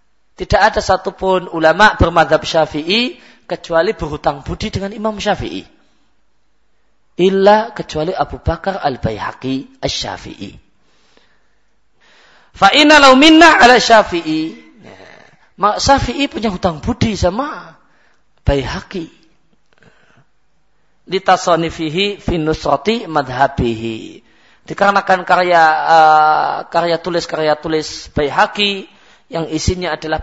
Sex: male